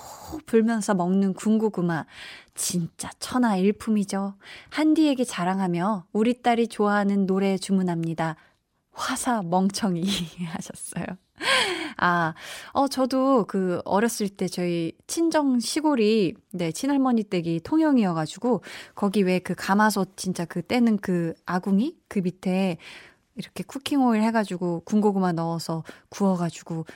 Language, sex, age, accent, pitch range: Korean, female, 20-39, native, 180-240 Hz